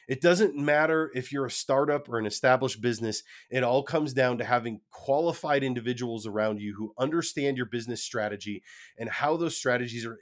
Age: 30-49